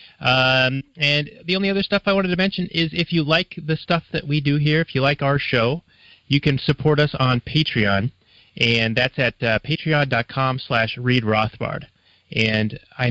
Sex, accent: male, American